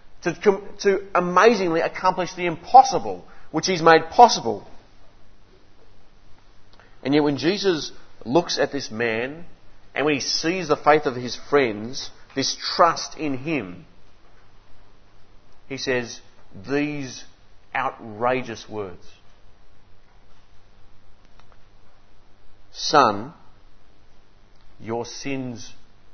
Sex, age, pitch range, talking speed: male, 40-59, 100-145 Hz, 90 wpm